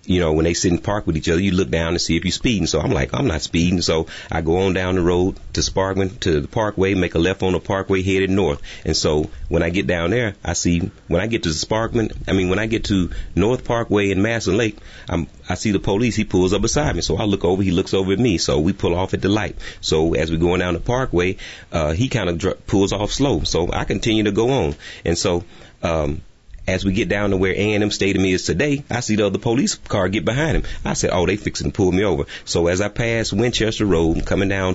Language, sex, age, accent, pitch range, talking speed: English, male, 30-49, American, 85-105 Hz, 270 wpm